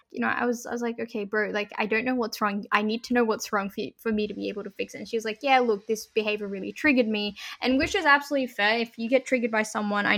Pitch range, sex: 205-235 Hz, female